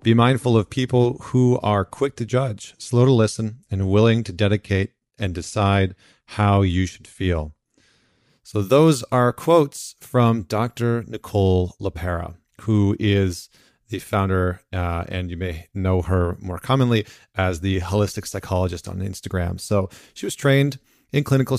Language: English